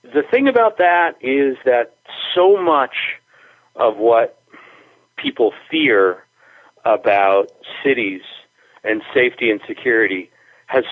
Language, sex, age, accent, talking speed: English, male, 40-59, American, 105 wpm